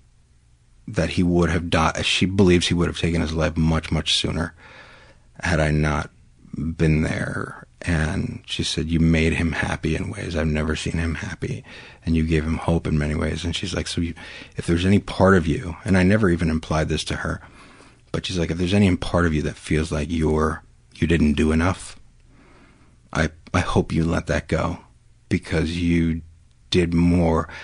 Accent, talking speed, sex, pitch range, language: American, 195 wpm, male, 80-90 Hz, English